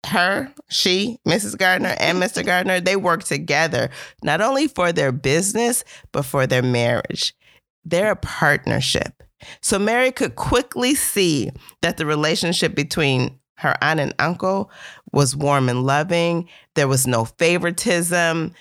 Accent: American